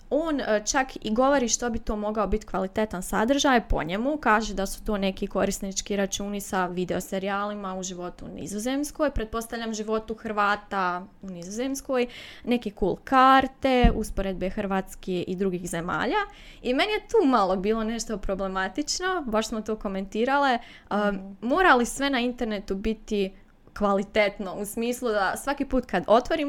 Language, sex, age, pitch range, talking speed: Croatian, female, 20-39, 200-255 Hz, 145 wpm